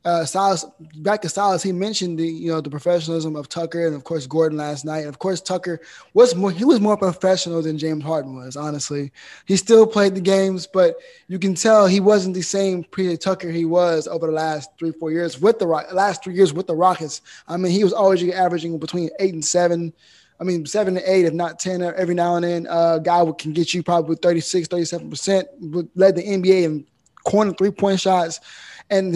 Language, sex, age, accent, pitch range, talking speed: English, male, 10-29, American, 165-195 Hz, 215 wpm